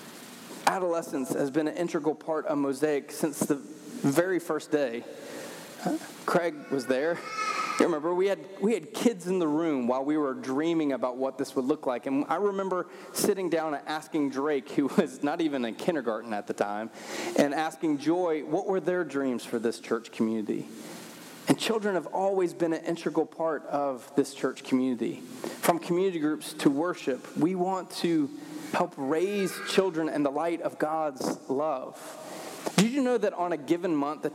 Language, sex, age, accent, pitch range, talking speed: English, male, 30-49, American, 145-190 Hz, 180 wpm